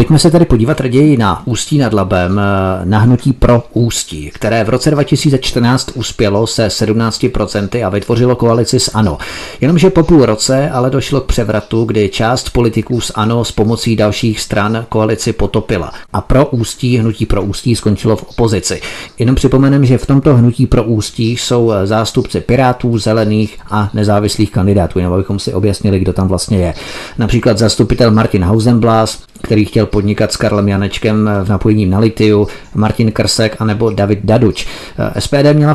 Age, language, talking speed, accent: 40-59, Czech, 165 wpm, native